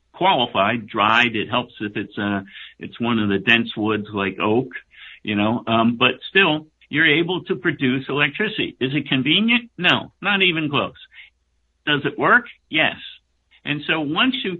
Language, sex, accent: English, male, American